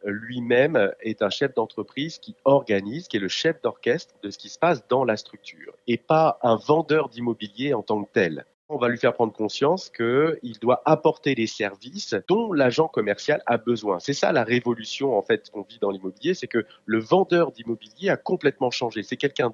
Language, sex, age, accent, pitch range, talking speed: French, male, 30-49, French, 110-155 Hz, 200 wpm